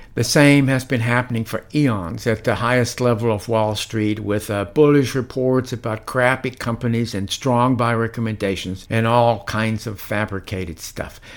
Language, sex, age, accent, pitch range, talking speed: English, male, 60-79, American, 110-135 Hz, 165 wpm